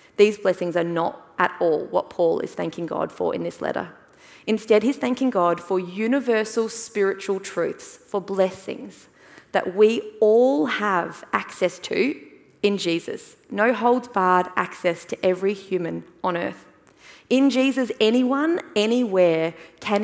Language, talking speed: English, 140 wpm